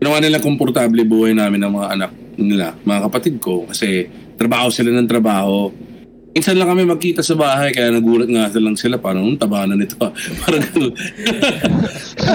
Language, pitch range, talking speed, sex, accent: Filipino, 110-155 Hz, 170 wpm, male, native